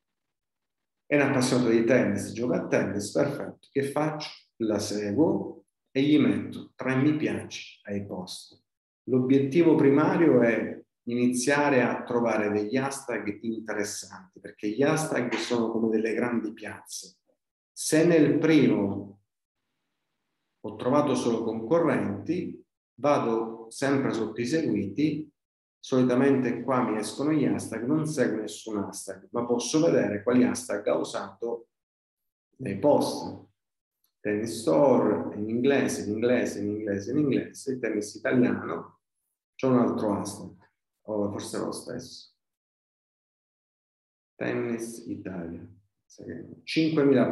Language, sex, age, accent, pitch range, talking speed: Italian, male, 40-59, native, 105-135 Hz, 115 wpm